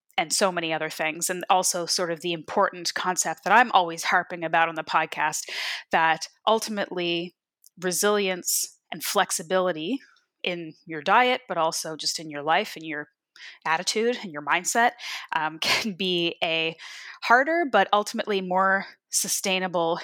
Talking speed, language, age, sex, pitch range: 145 wpm, English, 20-39, female, 160-195 Hz